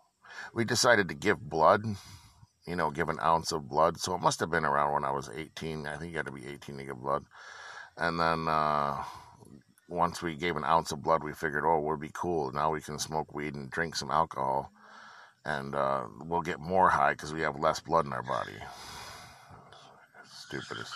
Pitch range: 75-95 Hz